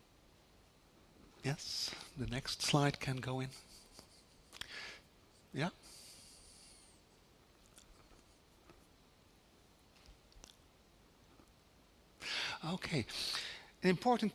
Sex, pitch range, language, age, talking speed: male, 130-170 Hz, English, 60-79, 45 wpm